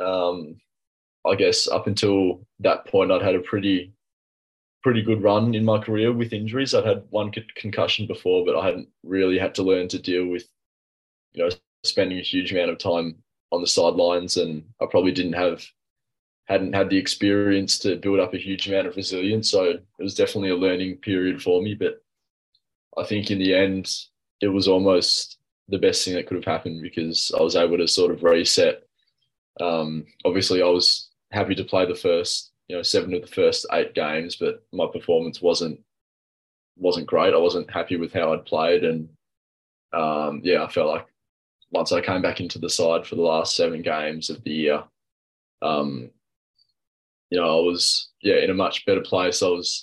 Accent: Australian